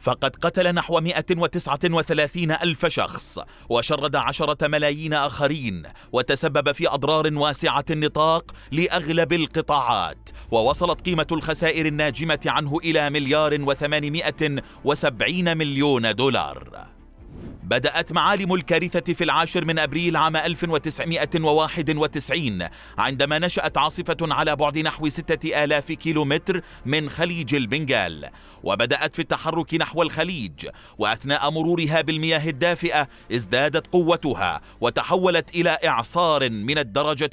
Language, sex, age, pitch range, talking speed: Arabic, male, 30-49, 150-170 Hz, 105 wpm